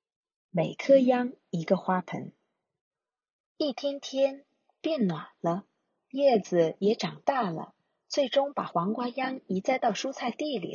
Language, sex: Chinese, female